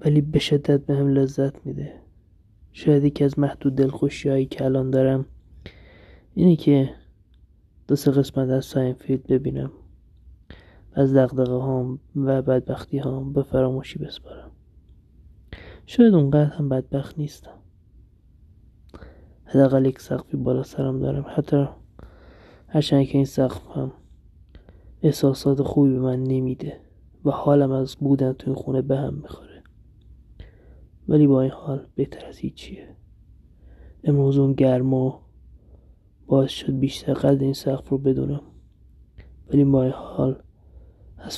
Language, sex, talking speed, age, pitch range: Persian, male, 120 wpm, 20-39, 90-140 Hz